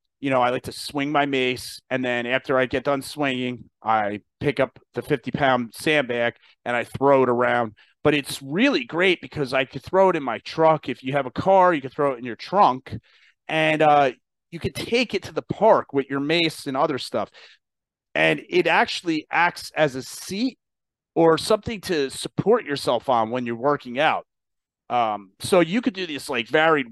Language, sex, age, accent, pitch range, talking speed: English, male, 30-49, American, 125-155 Hz, 200 wpm